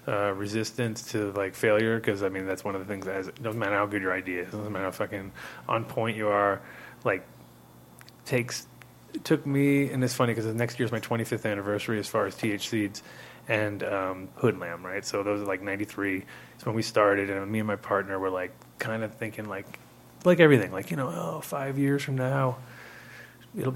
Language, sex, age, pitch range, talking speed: English, male, 20-39, 100-125 Hz, 220 wpm